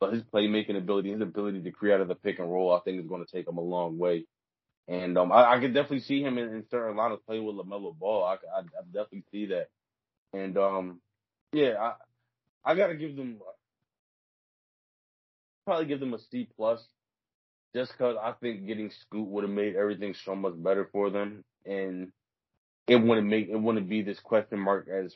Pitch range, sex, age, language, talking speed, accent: 95-110 Hz, male, 20-39, English, 205 wpm, American